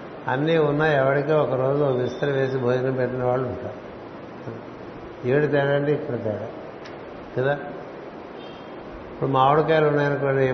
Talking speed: 110 wpm